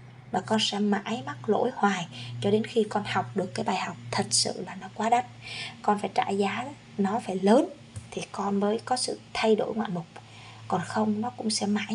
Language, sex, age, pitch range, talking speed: Vietnamese, female, 20-39, 185-235 Hz, 220 wpm